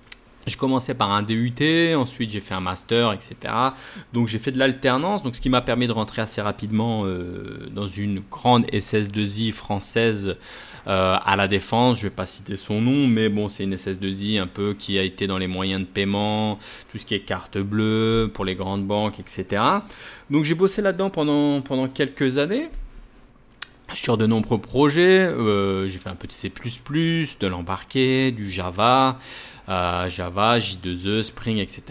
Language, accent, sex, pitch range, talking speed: French, French, male, 100-130 Hz, 190 wpm